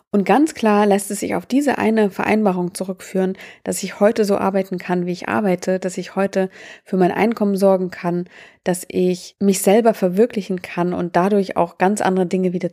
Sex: female